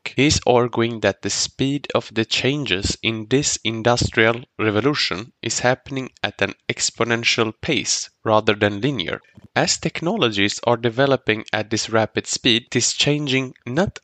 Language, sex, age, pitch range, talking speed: English, male, 10-29, 110-140 Hz, 145 wpm